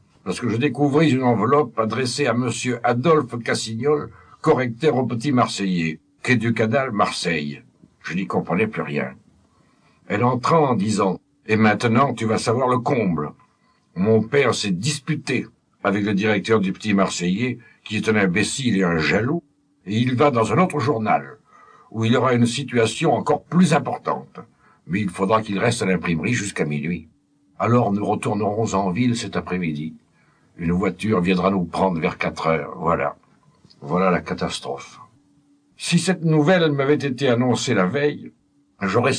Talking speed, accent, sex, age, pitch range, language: 160 wpm, French, male, 60-79, 95-140 Hz, French